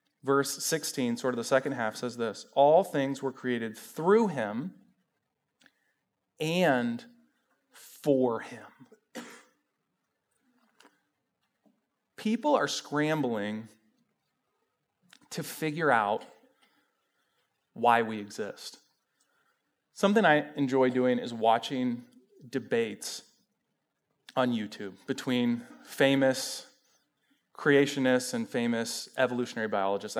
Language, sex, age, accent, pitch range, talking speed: English, male, 30-49, American, 115-145 Hz, 85 wpm